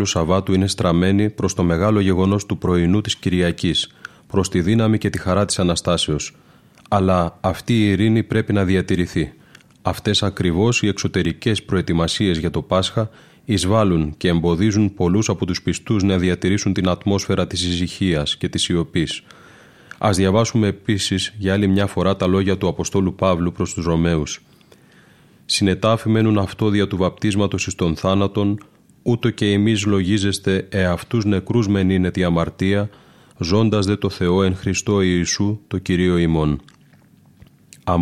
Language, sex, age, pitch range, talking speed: Greek, male, 30-49, 90-105 Hz, 105 wpm